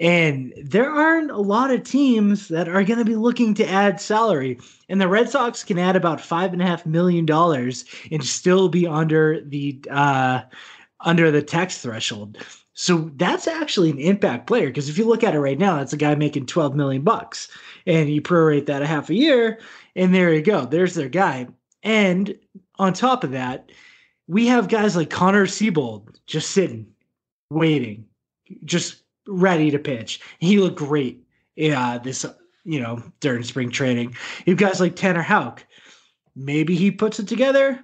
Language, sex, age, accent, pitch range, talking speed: English, male, 20-39, American, 145-200 Hz, 180 wpm